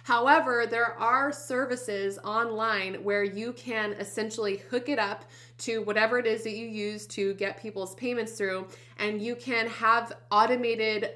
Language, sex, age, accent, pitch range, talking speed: English, female, 20-39, American, 200-245 Hz, 155 wpm